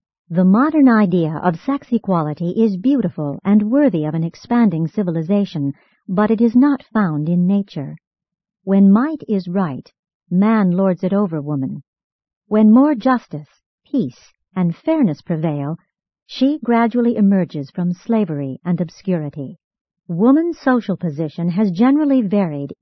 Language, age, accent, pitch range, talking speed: English, 50-69, American, 165-240 Hz, 130 wpm